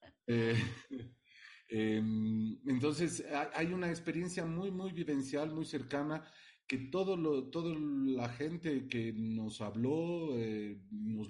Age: 40-59